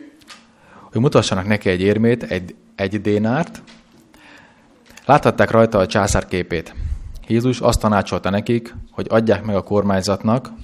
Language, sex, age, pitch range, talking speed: Hungarian, male, 30-49, 95-115 Hz, 125 wpm